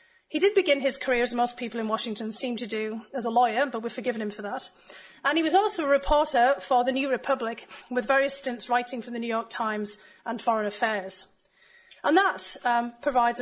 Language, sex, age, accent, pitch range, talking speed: English, female, 30-49, British, 220-275 Hz, 215 wpm